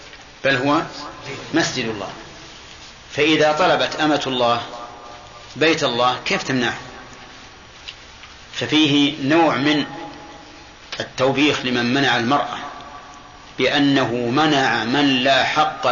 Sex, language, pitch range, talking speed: male, Arabic, 125-150 Hz, 90 wpm